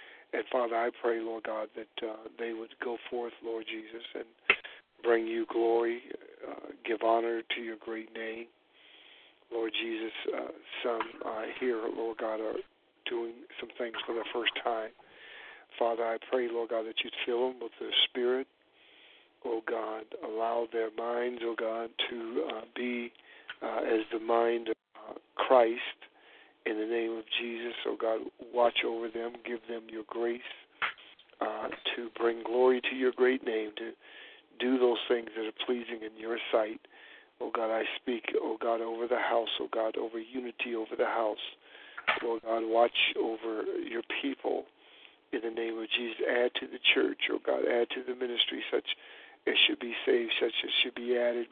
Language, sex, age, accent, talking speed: English, male, 50-69, American, 175 wpm